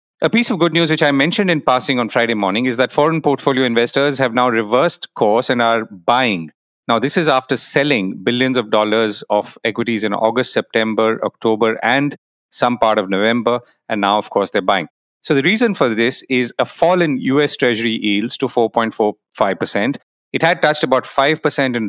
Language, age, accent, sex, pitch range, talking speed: English, 40-59, Indian, male, 110-140 Hz, 190 wpm